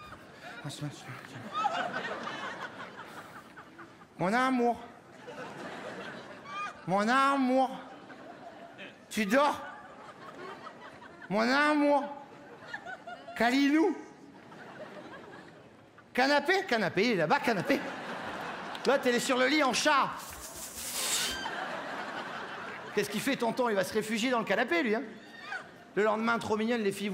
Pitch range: 195-290 Hz